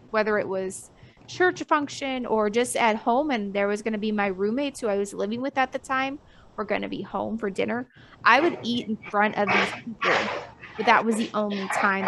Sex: female